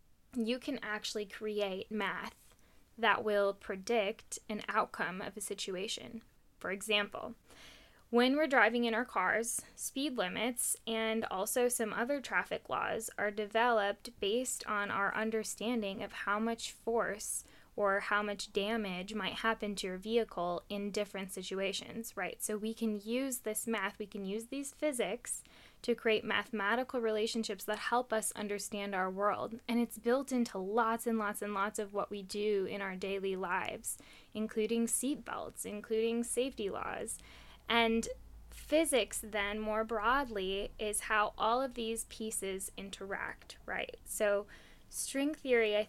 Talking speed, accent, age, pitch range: 150 wpm, American, 10-29, 205-230 Hz